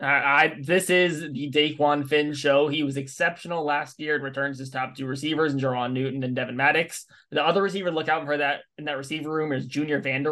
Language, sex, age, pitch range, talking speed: English, male, 20-39, 135-150 Hz, 235 wpm